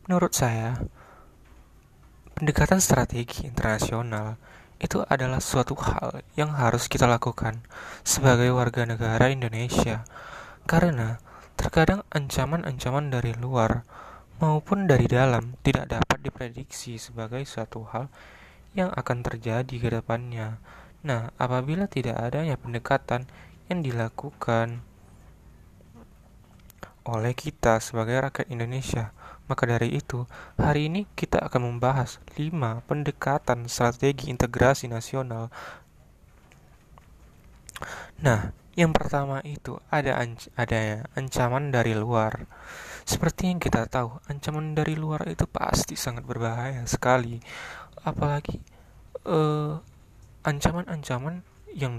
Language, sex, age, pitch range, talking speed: Indonesian, male, 20-39, 115-145 Hz, 100 wpm